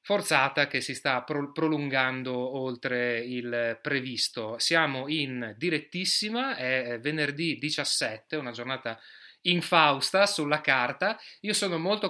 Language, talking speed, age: Italian, 120 wpm, 30-49